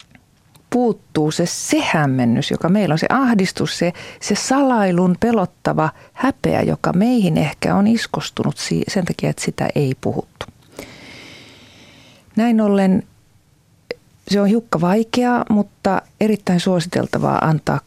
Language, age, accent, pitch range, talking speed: Finnish, 40-59, native, 155-210 Hz, 120 wpm